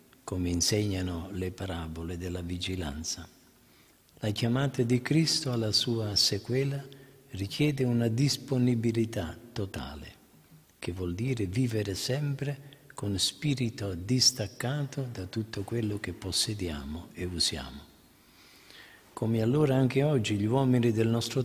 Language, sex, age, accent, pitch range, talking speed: Italian, male, 50-69, native, 95-130 Hz, 110 wpm